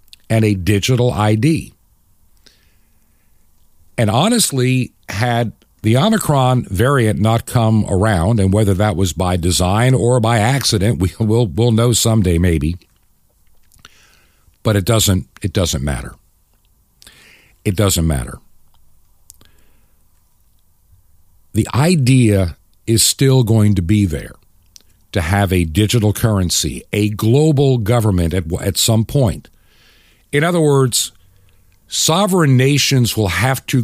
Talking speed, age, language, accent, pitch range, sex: 115 wpm, 50-69, English, American, 90-125 Hz, male